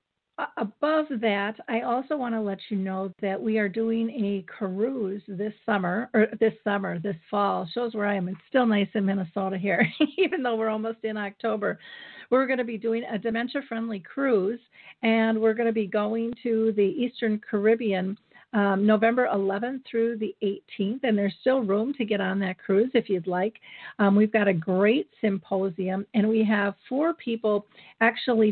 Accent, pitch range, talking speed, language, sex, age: American, 195-230 Hz, 185 wpm, English, female, 50-69